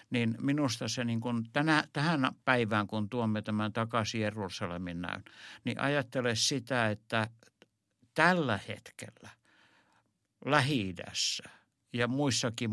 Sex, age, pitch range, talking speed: male, 60-79, 105-125 Hz, 110 wpm